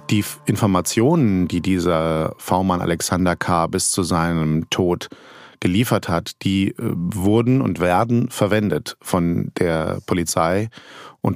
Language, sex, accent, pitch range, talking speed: German, male, German, 95-115 Hz, 115 wpm